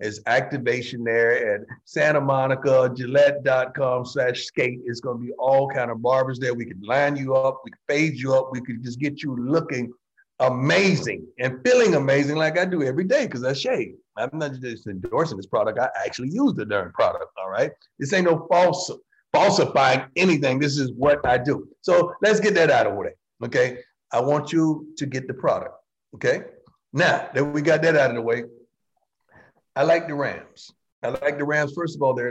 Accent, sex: American, male